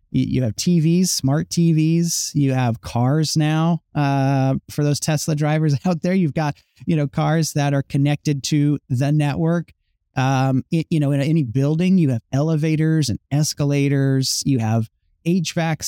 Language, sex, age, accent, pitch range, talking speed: English, male, 30-49, American, 125-160 Hz, 155 wpm